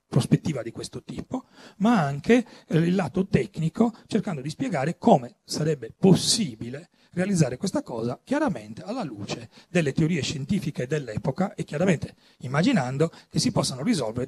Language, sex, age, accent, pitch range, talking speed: Italian, male, 40-59, native, 130-185 Hz, 135 wpm